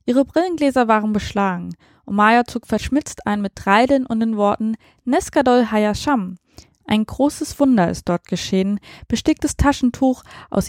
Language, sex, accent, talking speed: German, female, German, 140 wpm